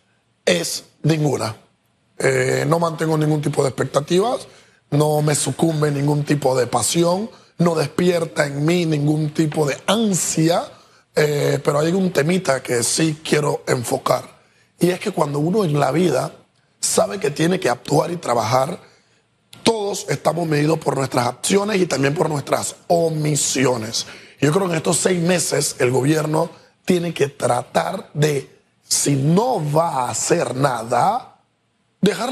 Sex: male